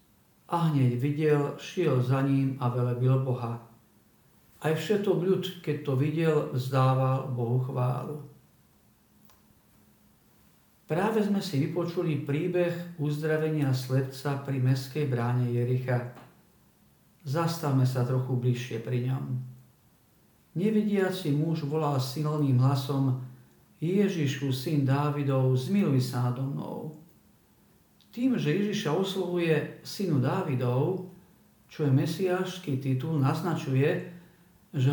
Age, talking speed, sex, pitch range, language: 50-69, 100 wpm, male, 130-170 Hz, Slovak